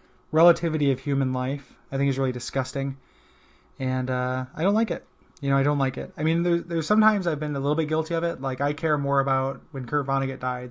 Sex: male